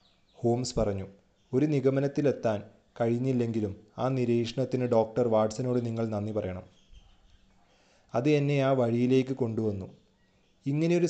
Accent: native